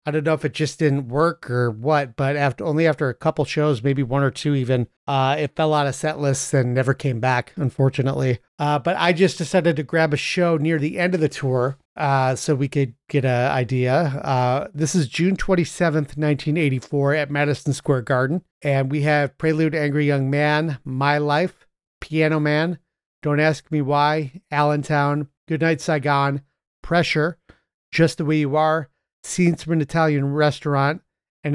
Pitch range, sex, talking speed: 140-160 Hz, male, 185 wpm